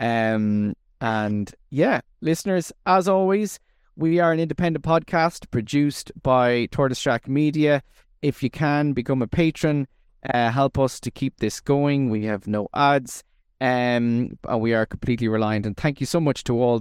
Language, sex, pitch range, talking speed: English, male, 120-150 Hz, 165 wpm